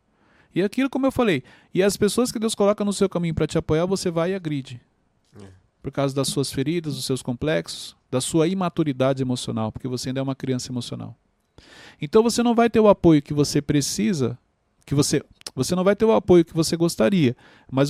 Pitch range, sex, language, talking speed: 135-185 Hz, male, Portuguese, 205 wpm